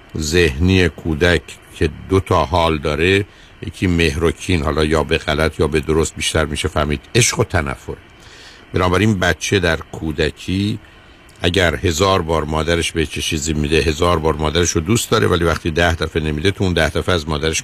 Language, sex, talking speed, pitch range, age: Persian, male, 165 wpm, 80-95 Hz, 50-69